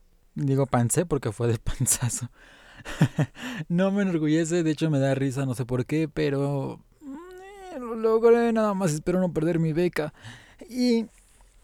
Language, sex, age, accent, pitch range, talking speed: Spanish, male, 20-39, Mexican, 130-185 Hz, 155 wpm